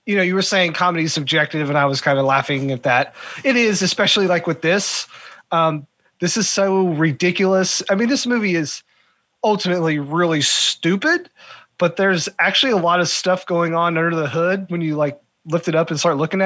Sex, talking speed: male, 205 wpm